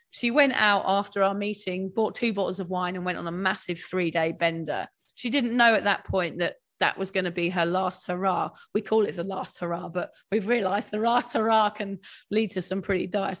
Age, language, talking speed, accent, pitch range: 30-49, English, 230 wpm, British, 180-225 Hz